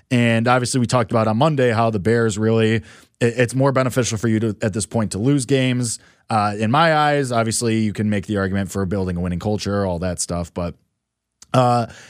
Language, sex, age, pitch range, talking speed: English, male, 20-39, 105-150 Hz, 215 wpm